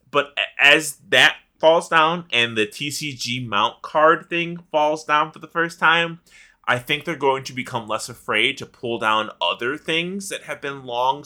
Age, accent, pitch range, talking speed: 20-39, American, 125-190 Hz, 180 wpm